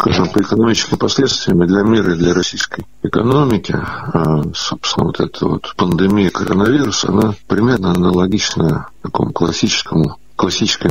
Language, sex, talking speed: Russian, male, 120 wpm